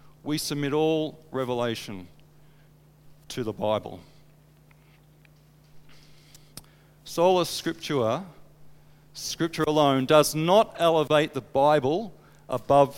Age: 40-59